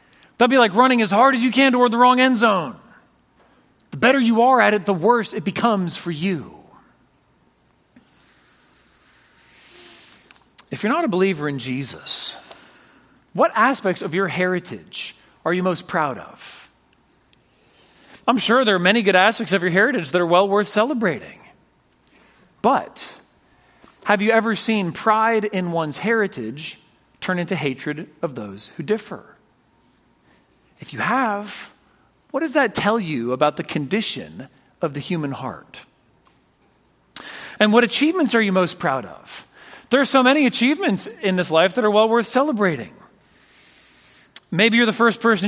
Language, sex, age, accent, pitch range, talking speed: English, male, 40-59, American, 175-230 Hz, 150 wpm